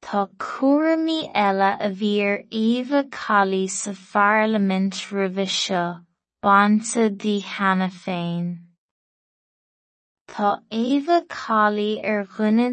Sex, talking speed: female, 70 wpm